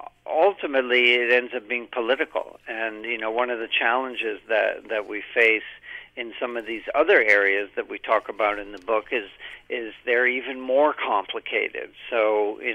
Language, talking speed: English, 180 wpm